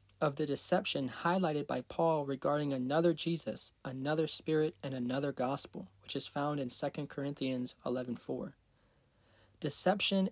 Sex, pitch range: male, 130-165 Hz